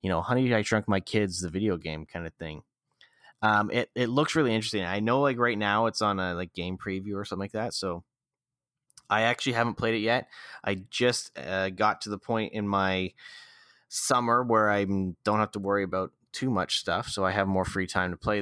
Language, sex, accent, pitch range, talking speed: English, male, American, 95-115 Hz, 225 wpm